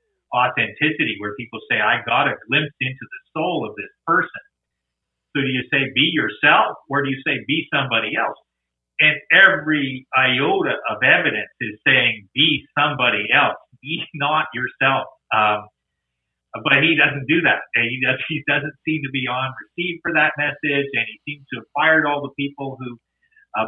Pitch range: 110-150 Hz